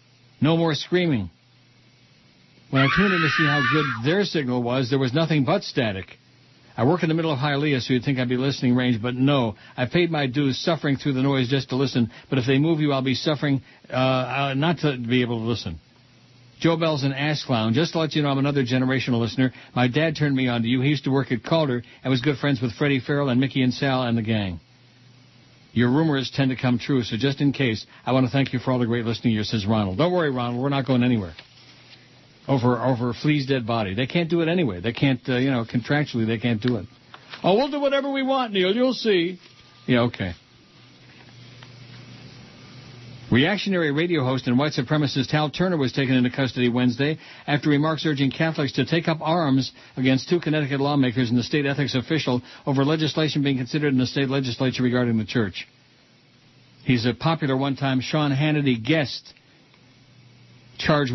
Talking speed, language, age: 210 wpm, English, 60-79